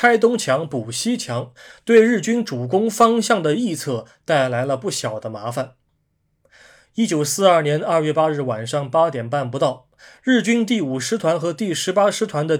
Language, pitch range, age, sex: Chinese, 130-205 Hz, 20-39, male